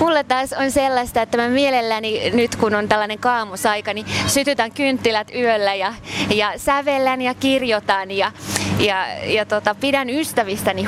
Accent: native